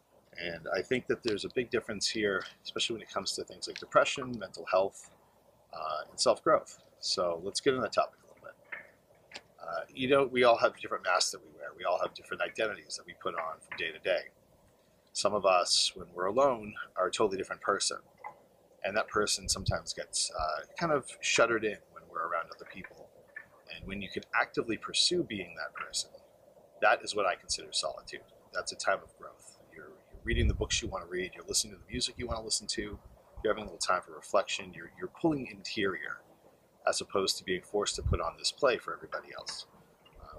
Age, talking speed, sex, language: 40-59, 210 wpm, male, English